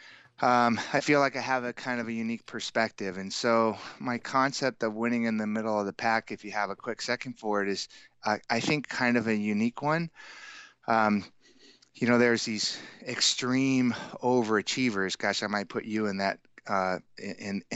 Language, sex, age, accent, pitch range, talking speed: English, male, 30-49, American, 100-120 Hz, 185 wpm